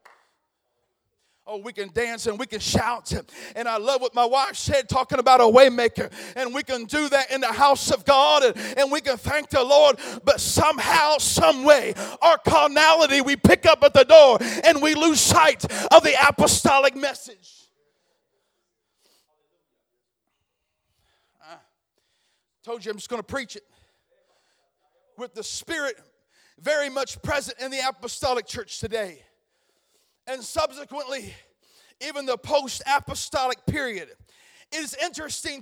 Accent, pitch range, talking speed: American, 250-300 Hz, 140 wpm